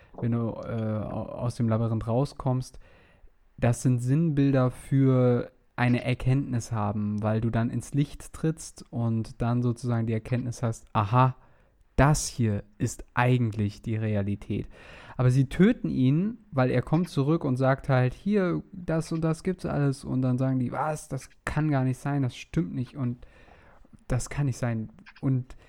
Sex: male